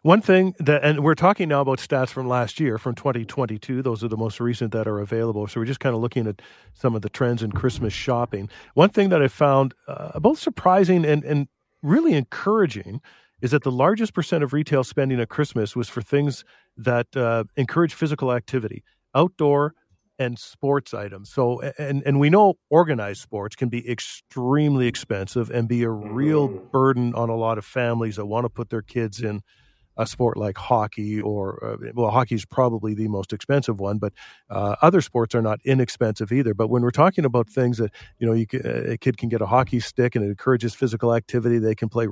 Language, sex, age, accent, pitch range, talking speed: English, male, 40-59, American, 115-140 Hz, 210 wpm